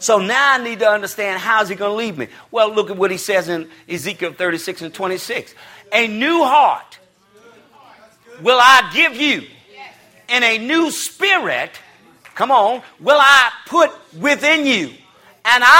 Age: 50-69